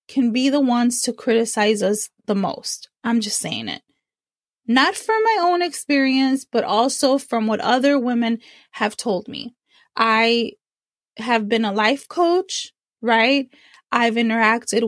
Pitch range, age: 230-280 Hz, 20-39